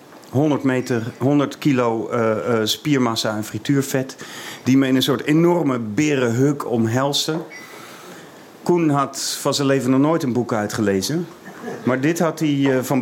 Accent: Dutch